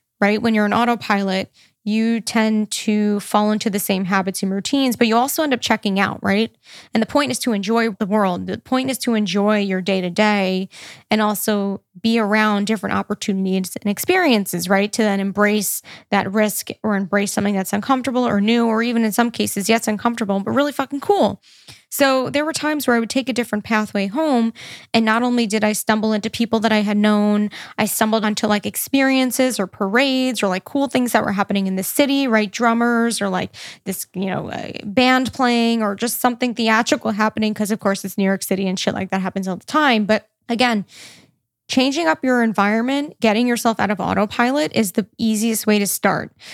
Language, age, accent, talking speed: English, 20-39, American, 200 wpm